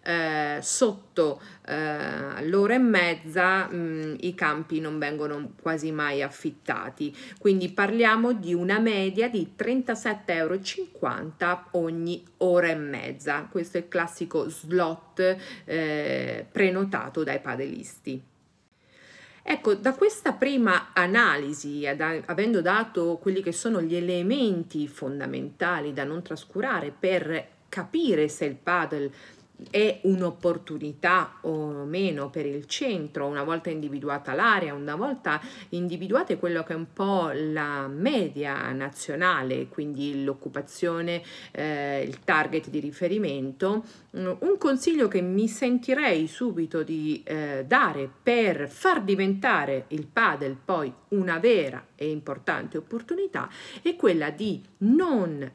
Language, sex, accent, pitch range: Italian, female, native, 150-200 Hz